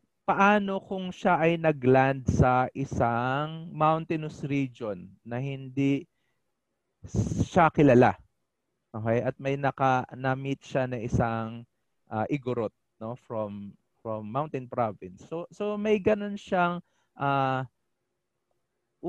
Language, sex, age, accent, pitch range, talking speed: Filipino, male, 20-39, native, 130-180 Hz, 105 wpm